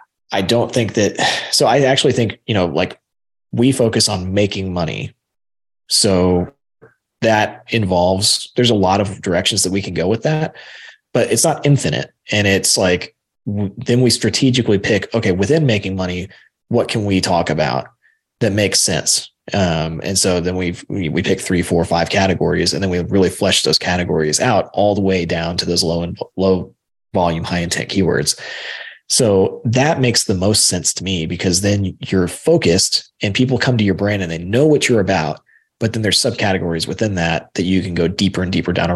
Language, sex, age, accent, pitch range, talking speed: English, male, 20-39, American, 90-110 Hz, 195 wpm